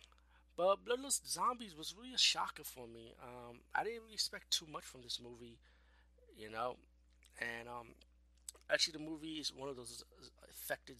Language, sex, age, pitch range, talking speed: English, male, 30-49, 110-160 Hz, 165 wpm